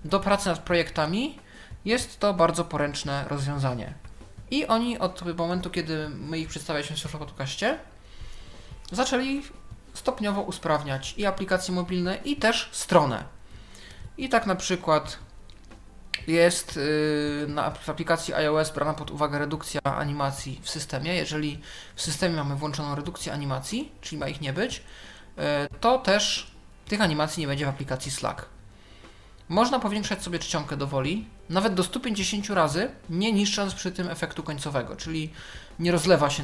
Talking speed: 135 wpm